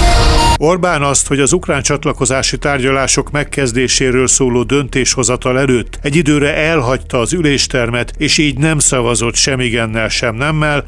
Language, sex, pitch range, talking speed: Hungarian, male, 130-160 Hz, 130 wpm